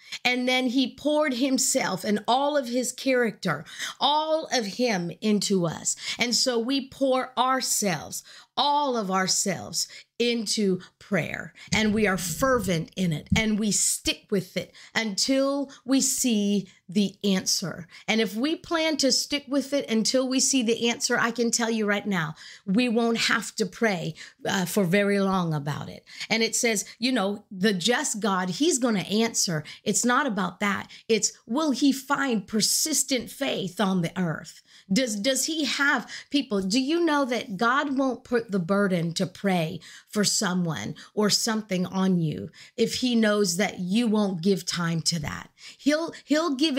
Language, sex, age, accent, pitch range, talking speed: English, female, 50-69, American, 190-255 Hz, 170 wpm